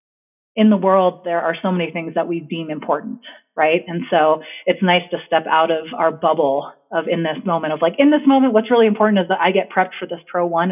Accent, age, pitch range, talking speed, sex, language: American, 30-49, 165-190 Hz, 245 wpm, female, English